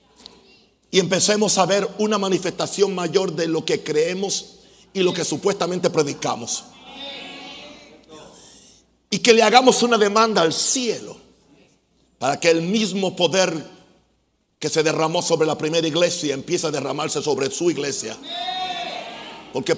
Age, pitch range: 50-69, 155-200 Hz